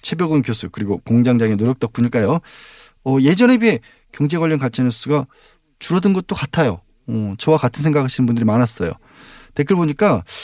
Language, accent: Korean, native